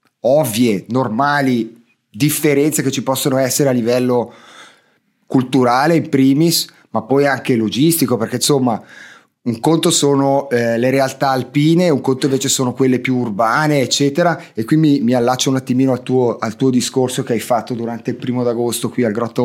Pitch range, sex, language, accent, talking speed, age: 120-150 Hz, male, Italian, native, 165 wpm, 30-49